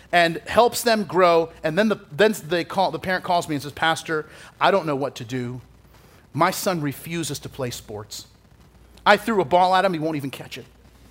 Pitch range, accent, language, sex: 130-185 Hz, American, English, male